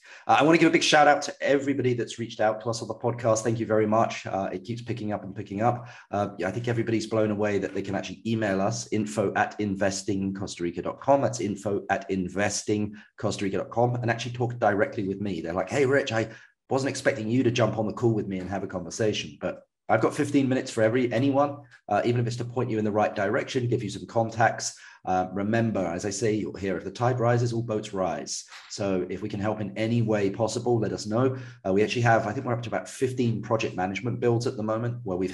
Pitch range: 95-120 Hz